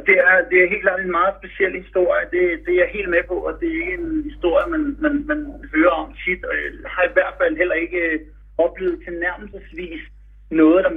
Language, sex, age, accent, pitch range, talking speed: Danish, male, 60-79, native, 180-290 Hz, 235 wpm